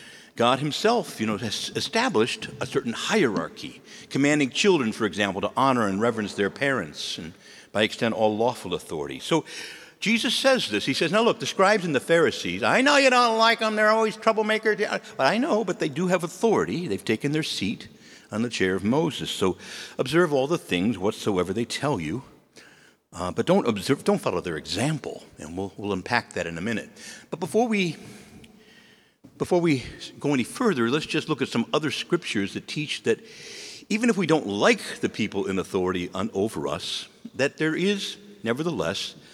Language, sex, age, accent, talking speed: English, male, 60-79, American, 185 wpm